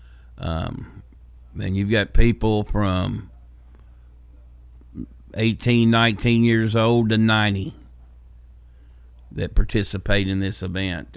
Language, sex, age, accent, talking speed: English, male, 50-69, American, 90 wpm